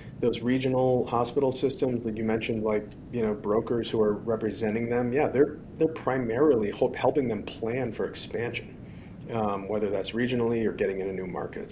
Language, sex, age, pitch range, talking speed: English, male, 40-59, 105-120 Hz, 180 wpm